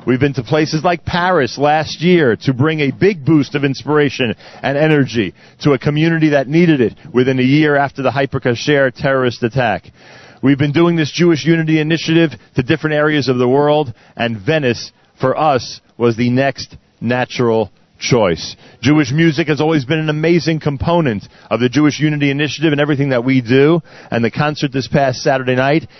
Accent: American